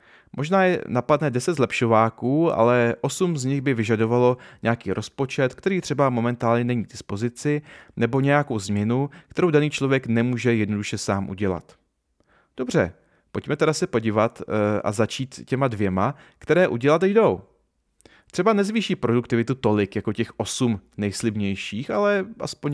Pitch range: 105-145 Hz